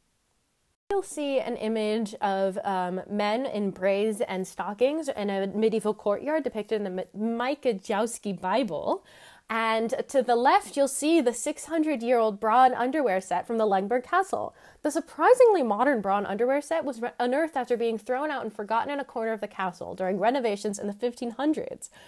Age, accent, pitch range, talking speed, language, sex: 20-39, American, 205-285 Hz, 175 wpm, English, female